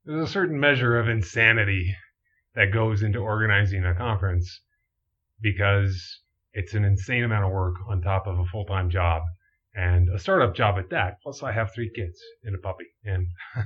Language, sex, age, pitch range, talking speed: English, male, 30-49, 95-120 Hz, 175 wpm